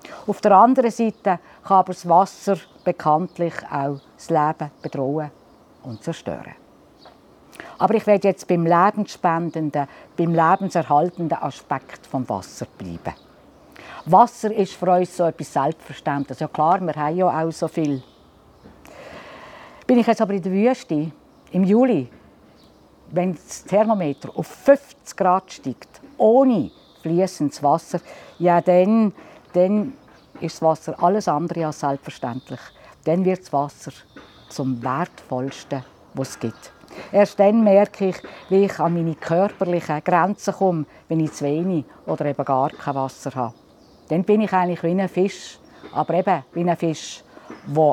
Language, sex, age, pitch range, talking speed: German, female, 50-69, 145-190 Hz, 145 wpm